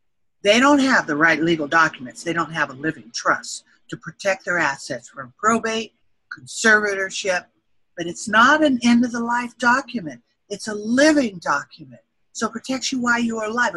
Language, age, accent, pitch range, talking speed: English, 50-69, American, 165-240 Hz, 165 wpm